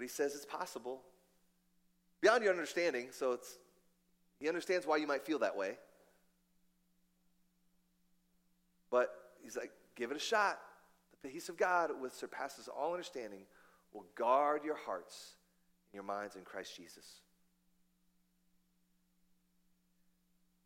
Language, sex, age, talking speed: English, male, 30-49, 130 wpm